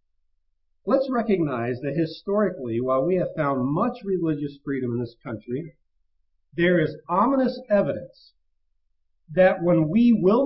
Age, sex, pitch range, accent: 50-69, male, 140-215 Hz, American